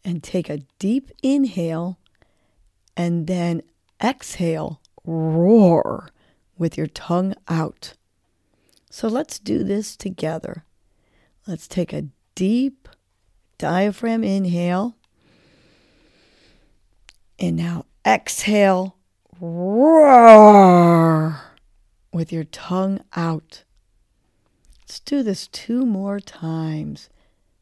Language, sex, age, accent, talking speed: English, female, 40-59, American, 85 wpm